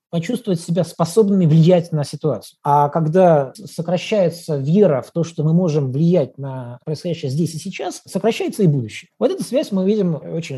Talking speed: 170 wpm